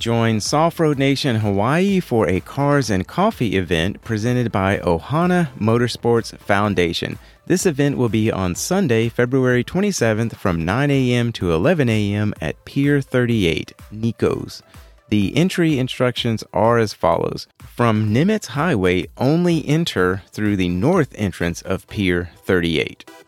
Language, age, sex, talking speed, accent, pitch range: English, 40-59, male, 135 wpm, American, 95-125 Hz